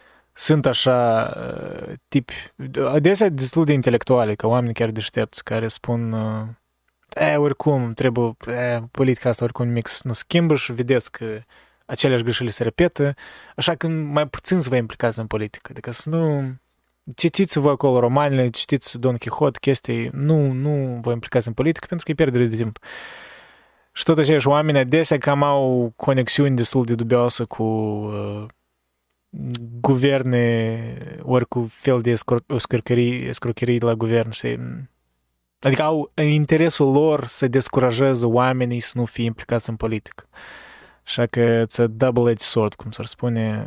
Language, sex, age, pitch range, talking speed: Romanian, male, 20-39, 115-135 Hz, 145 wpm